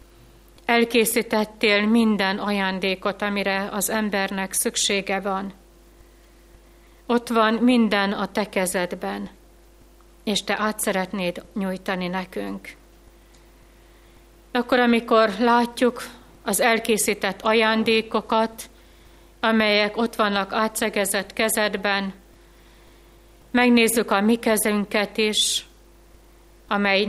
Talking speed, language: 80 wpm, Hungarian